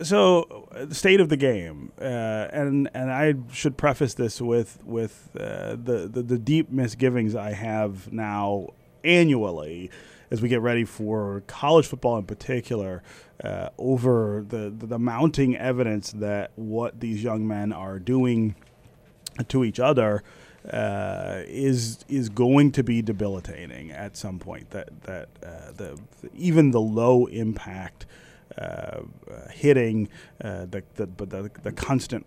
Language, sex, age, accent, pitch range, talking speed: English, male, 30-49, American, 105-130 Hz, 145 wpm